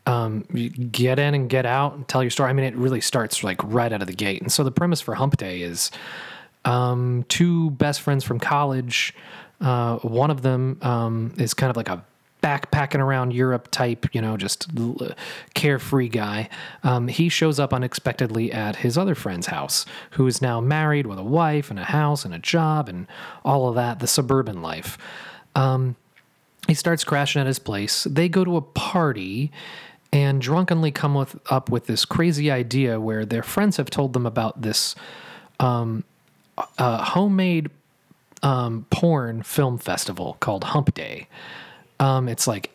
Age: 30-49